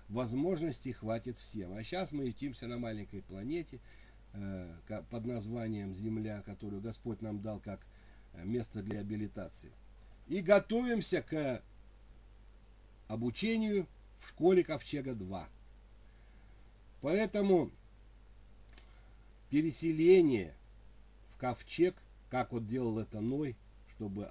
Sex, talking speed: male, 95 wpm